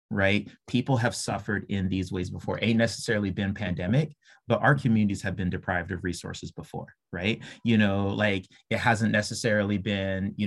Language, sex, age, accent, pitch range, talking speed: English, male, 30-49, American, 95-120 Hz, 180 wpm